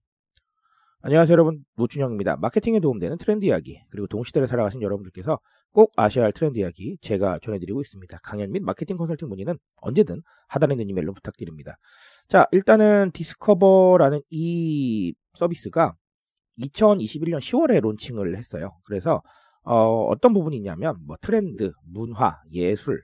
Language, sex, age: Korean, male, 40-59